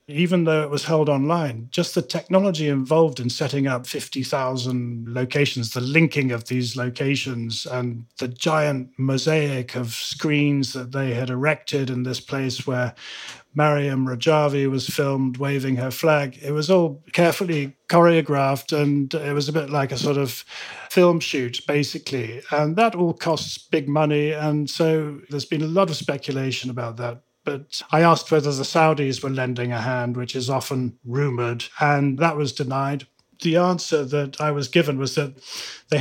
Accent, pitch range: British, 130-155 Hz